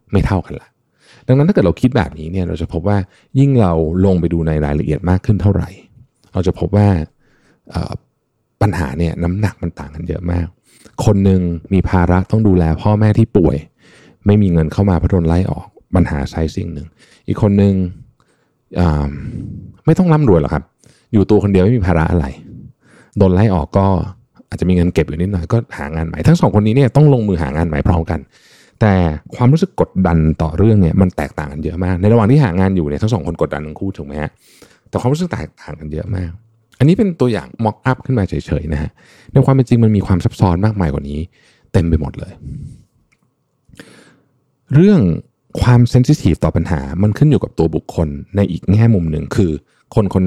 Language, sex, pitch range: Thai, male, 85-115 Hz